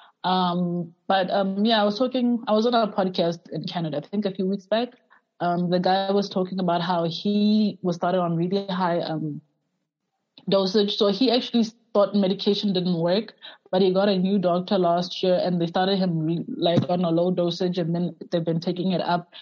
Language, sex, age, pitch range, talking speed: English, female, 20-39, 175-215 Hz, 205 wpm